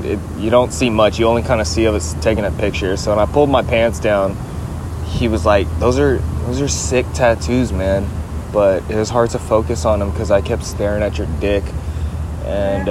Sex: male